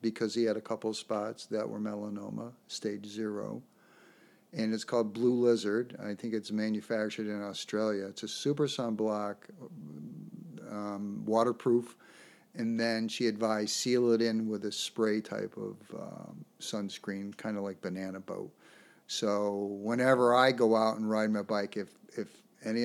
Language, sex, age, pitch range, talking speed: English, male, 50-69, 105-120 Hz, 160 wpm